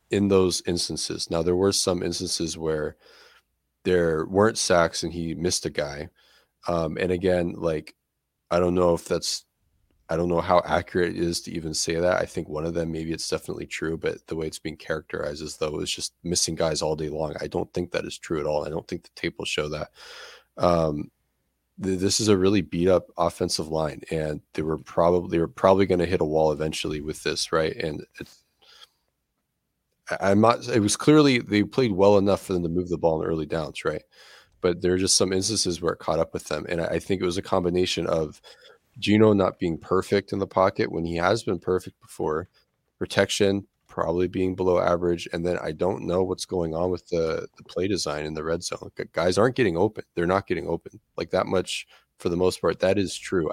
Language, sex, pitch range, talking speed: English, male, 80-95 Hz, 220 wpm